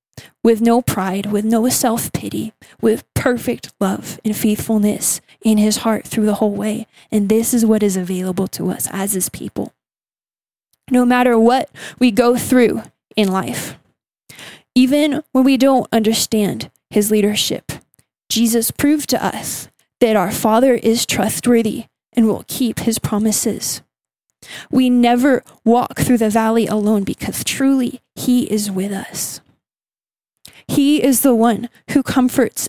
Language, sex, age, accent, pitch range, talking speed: English, female, 10-29, American, 215-245 Hz, 140 wpm